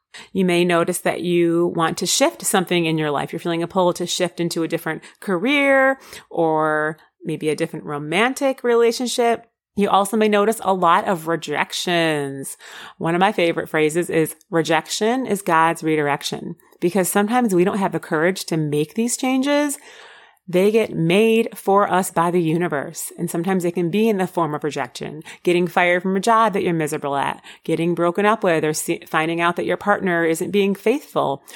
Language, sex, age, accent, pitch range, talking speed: English, female, 30-49, American, 160-205 Hz, 185 wpm